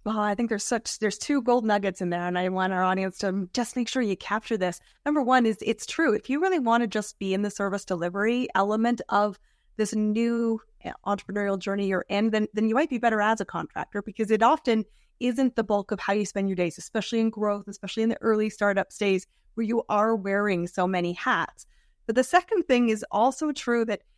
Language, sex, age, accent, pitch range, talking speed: English, female, 20-39, American, 200-235 Hz, 230 wpm